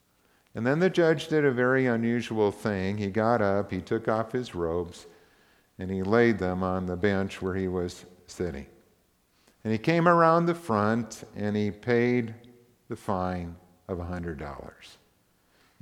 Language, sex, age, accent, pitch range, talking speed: English, male, 50-69, American, 90-120 Hz, 155 wpm